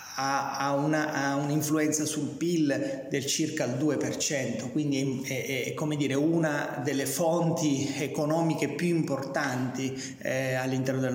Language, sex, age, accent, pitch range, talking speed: Italian, male, 30-49, native, 130-155 Hz, 125 wpm